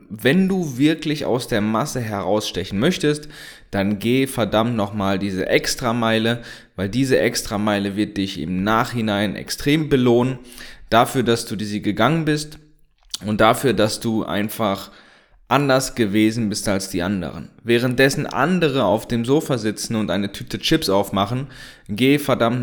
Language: German